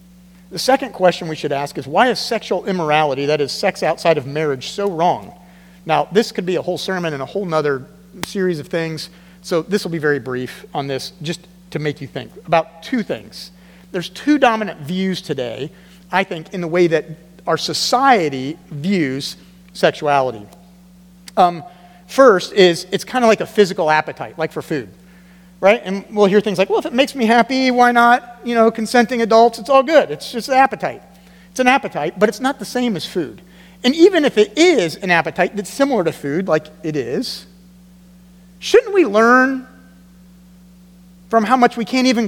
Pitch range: 175-235 Hz